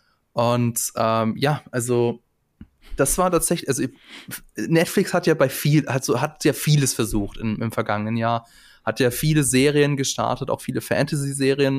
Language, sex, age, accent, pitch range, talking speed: German, male, 20-39, German, 115-140 Hz, 155 wpm